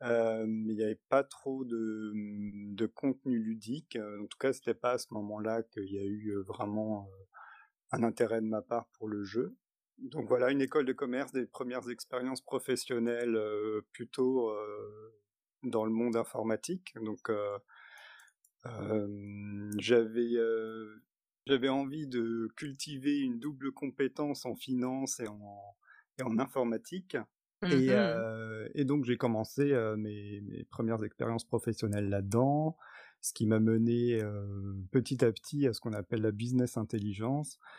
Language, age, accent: French, 30-49, French